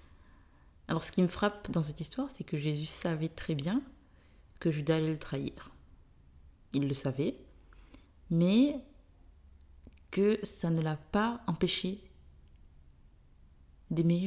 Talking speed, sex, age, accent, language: 125 wpm, female, 30-49, French, French